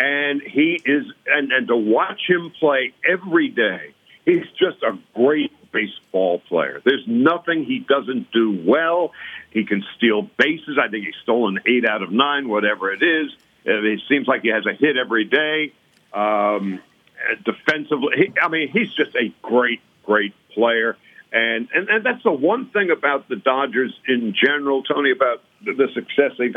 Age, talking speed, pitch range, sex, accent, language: 60-79, 170 wpm, 125-195 Hz, male, American, English